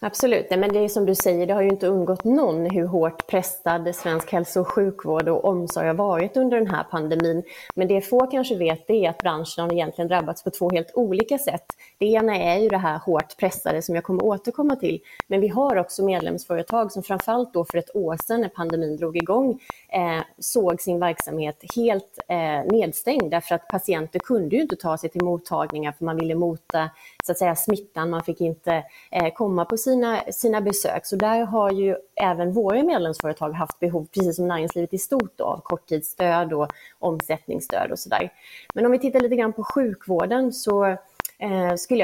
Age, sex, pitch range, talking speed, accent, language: 30-49, female, 170-220 Hz, 200 wpm, native, Swedish